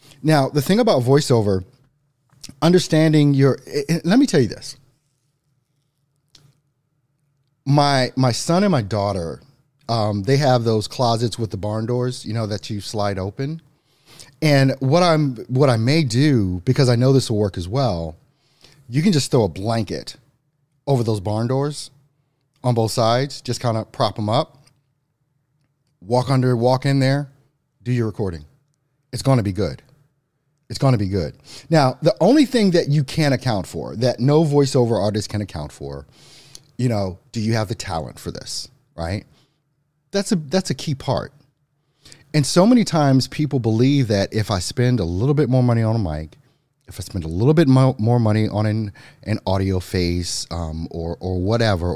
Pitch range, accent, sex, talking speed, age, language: 105-145 Hz, American, male, 175 wpm, 30-49, English